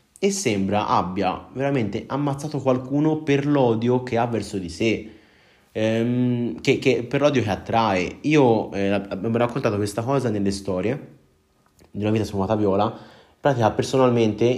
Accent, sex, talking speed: native, male, 150 wpm